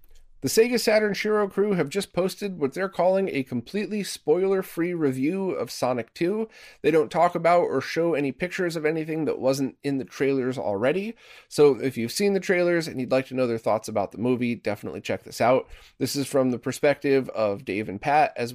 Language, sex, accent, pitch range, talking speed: English, male, American, 120-170 Hz, 205 wpm